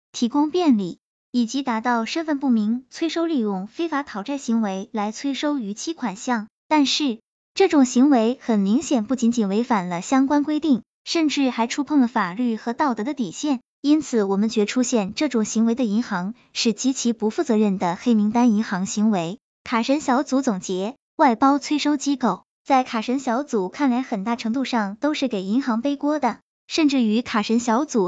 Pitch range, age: 220-275 Hz, 10-29